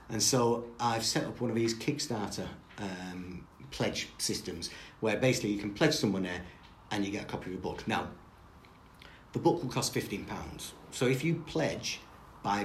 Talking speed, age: 185 wpm, 50-69